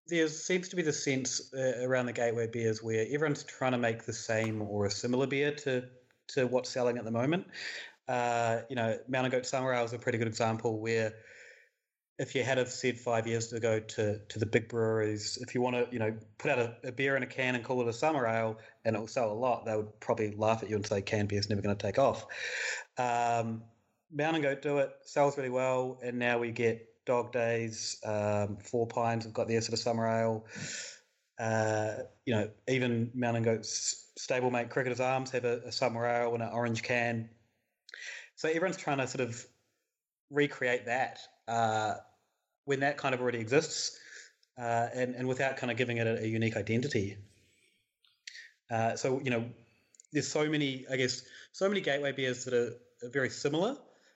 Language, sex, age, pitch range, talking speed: English, male, 30-49, 115-130 Hz, 205 wpm